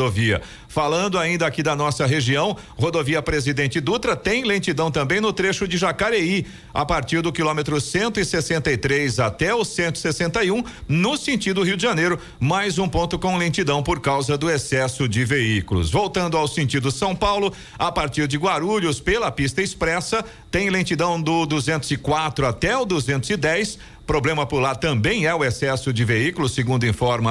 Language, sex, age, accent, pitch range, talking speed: Portuguese, male, 50-69, Brazilian, 135-175 Hz, 155 wpm